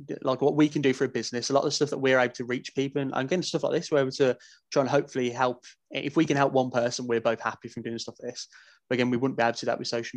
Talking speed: 335 wpm